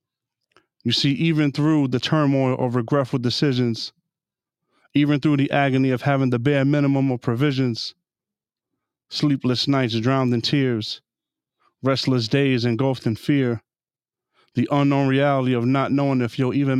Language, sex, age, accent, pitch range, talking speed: English, male, 30-49, American, 125-145 Hz, 140 wpm